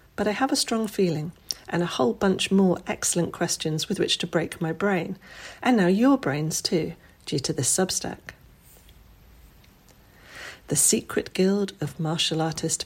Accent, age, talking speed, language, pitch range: British, 40-59, 160 wpm, English, 165-200 Hz